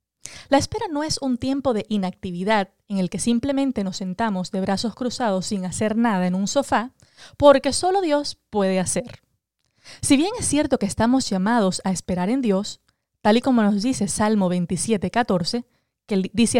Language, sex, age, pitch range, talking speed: English, female, 20-39, 195-265 Hz, 175 wpm